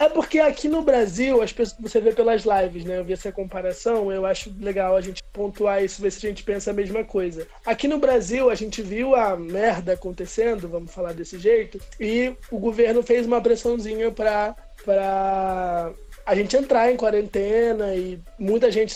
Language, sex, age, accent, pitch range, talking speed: Portuguese, male, 20-39, Brazilian, 200-250 Hz, 190 wpm